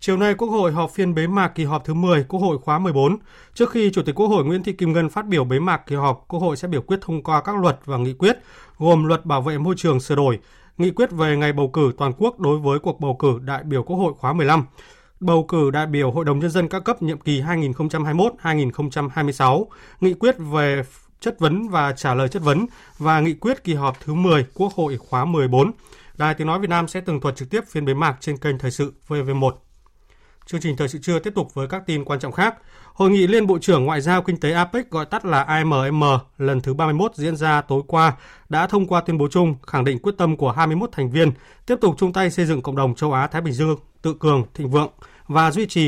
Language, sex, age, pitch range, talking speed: Vietnamese, male, 20-39, 140-175 Hz, 250 wpm